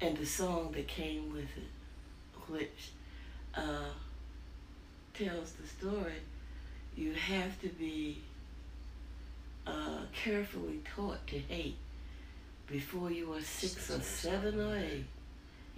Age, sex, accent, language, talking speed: 60-79, female, American, English, 110 wpm